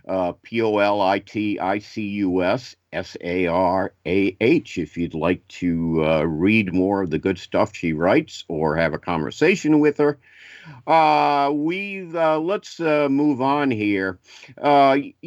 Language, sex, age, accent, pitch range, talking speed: English, male, 50-69, American, 90-125 Hz, 165 wpm